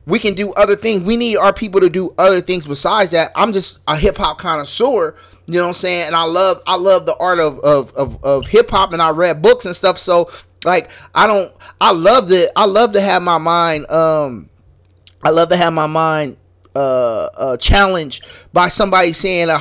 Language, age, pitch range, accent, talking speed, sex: English, 30-49, 155-195 Hz, American, 220 wpm, male